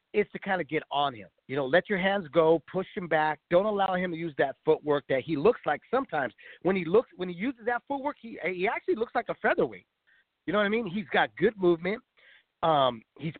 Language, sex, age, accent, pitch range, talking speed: English, male, 40-59, American, 150-210 Hz, 240 wpm